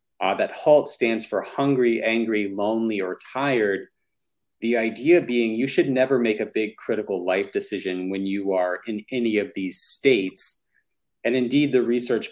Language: English